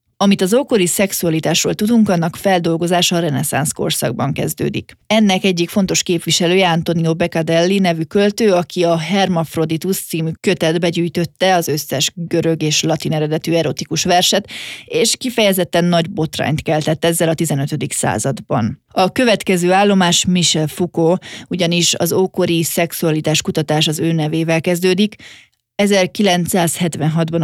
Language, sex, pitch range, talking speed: Hungarian, female, 160-185 Hz, 125 wpm